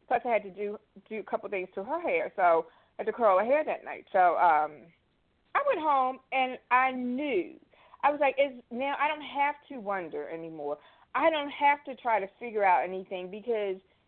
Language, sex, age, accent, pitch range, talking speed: English, female, 40-59, American, 185-280 Hz, 215 wpm